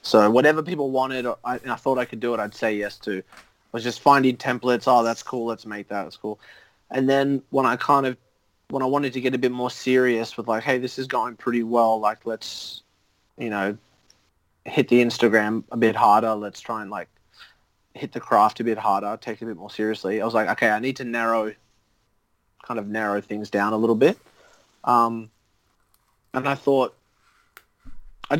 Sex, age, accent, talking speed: male, 30-49, Australian, 205 wpm